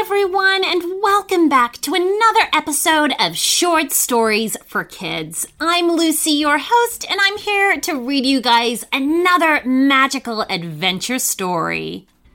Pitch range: 235-375 Hz